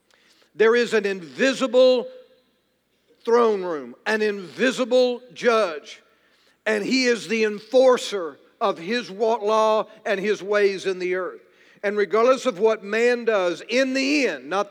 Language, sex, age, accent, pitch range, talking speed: English, male, 50-69, American, 195-240 Hz, 135 wpm